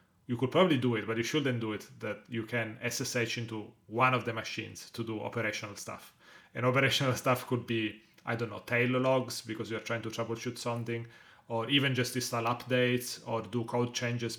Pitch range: 110-125 Hz